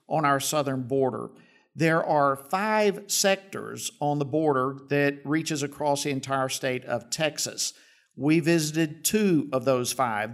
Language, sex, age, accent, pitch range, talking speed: English, male, 50-69, American, 135-165 Hz, 145 wpm